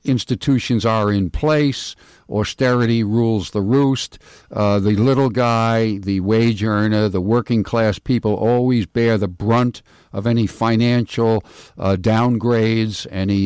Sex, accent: male, American